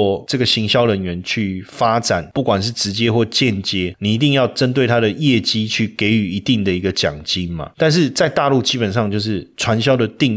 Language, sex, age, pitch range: Chinese, male, 30-49, 105-145 Hz